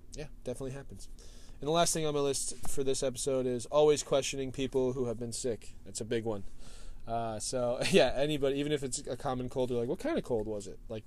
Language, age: English, 20-39